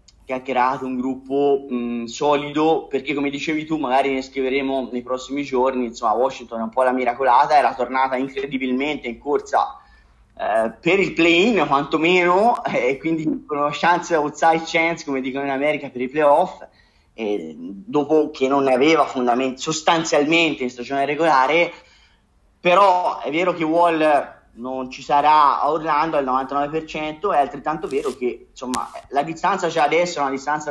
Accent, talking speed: native, 160 wpm